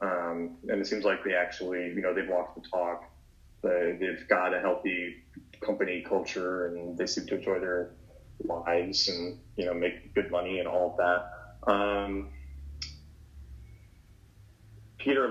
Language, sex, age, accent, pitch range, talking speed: English, male, 20-39, American, 90-105 Hz, 150 wpm